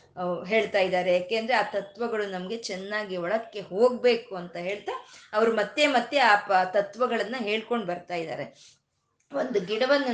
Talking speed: 130 wpm